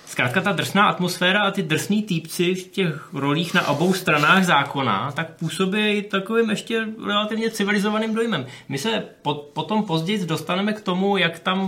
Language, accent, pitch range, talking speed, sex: Czech, native, 140-180 Hz, 160 wpm, male